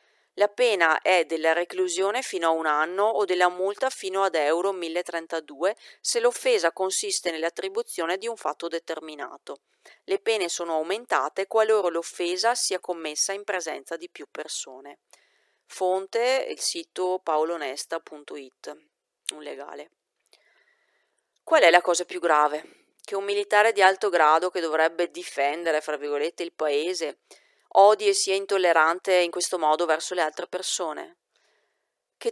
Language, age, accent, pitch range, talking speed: Italian, 40-59, native, 170-225 Hz, 135 wpm